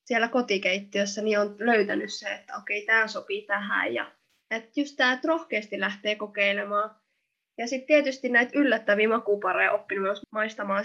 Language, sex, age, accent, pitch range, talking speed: Finnish, female, 20-39, native, 210-265 Hz, 150 wpm